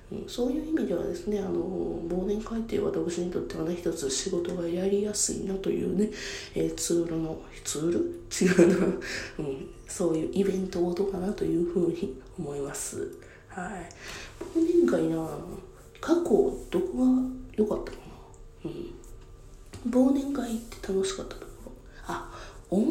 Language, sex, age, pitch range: Japanese, female, 20-39, 175-255 Hz